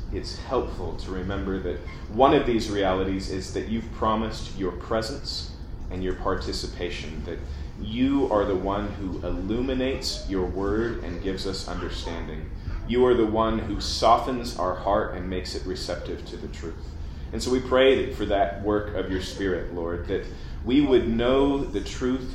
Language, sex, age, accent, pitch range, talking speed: English, male, 30-49, American, 85-115 Hz, 170 wpm